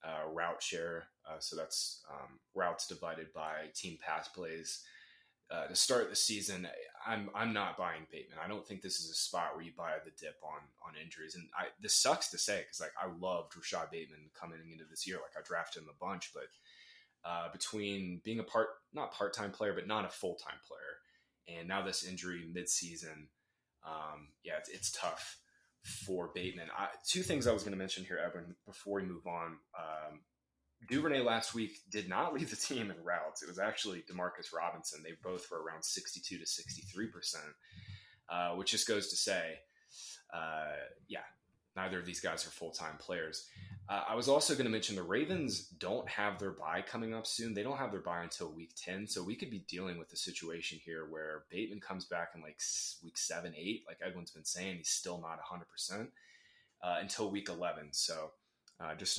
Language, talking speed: English, 200 wpm